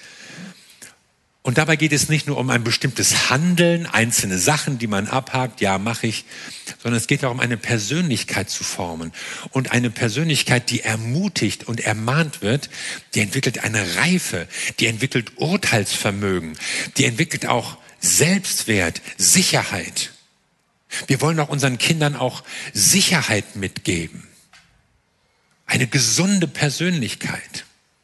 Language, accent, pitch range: German, German, 115-155 Hz